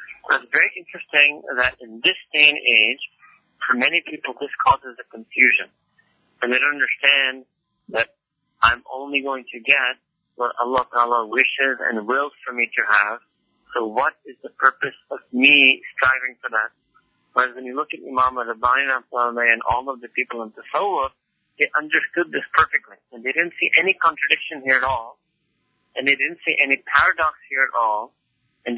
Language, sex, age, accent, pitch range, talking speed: English, male, 50-69, American, 125-175 Hz, 175 wpm